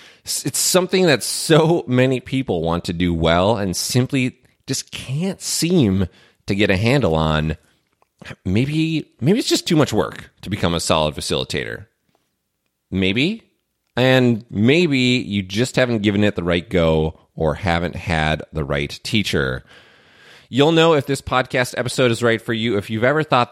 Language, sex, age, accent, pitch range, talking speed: English, male, 30-49, American, 85-125 Hz, 160 wpm